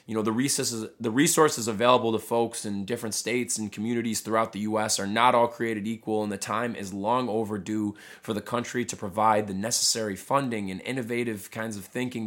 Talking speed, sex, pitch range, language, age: 190 wpm, male, 105-120 Hz, English, 20-39